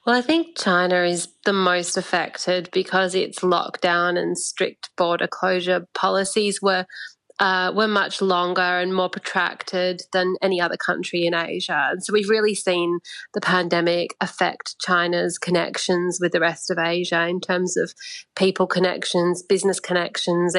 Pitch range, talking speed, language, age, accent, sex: 175-200 Hz, 150 wpm, English, 30-49, Australian, female